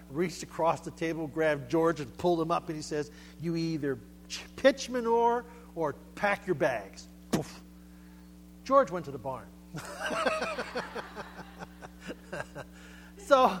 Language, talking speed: English, 120 wpm